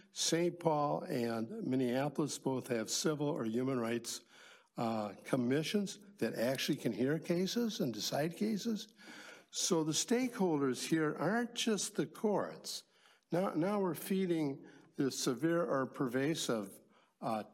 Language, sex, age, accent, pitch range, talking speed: English, male, 60-79, American, 135-195 Hz, 125 wpm